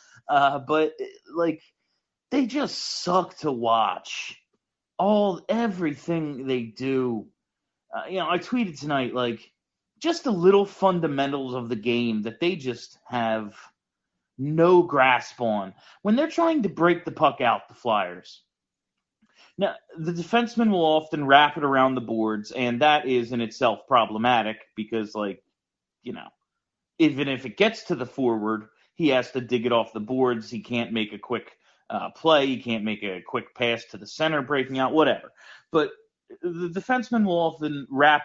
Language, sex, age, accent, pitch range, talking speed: English, male, 30-49, American, 120-175 Hz, 160 wpm